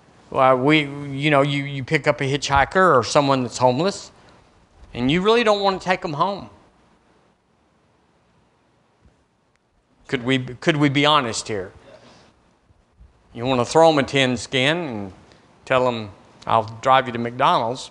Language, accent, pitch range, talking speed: English, American, 125-170 Hz, 155 wpm